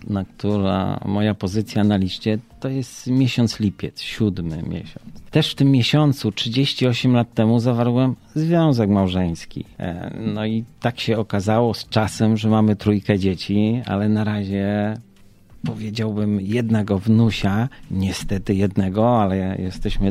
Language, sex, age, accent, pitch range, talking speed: Polish, male, 40-59, native, 100-125 Hz, 130 wpm